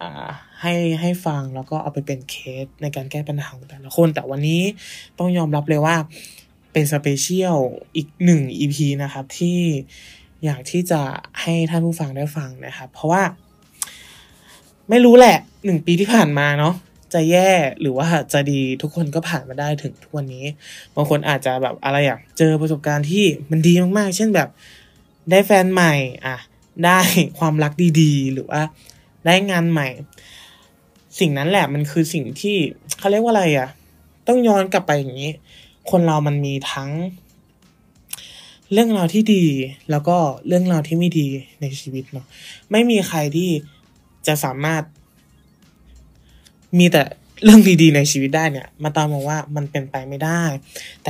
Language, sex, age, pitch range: Thai, male, 20-39, 140-175 Hz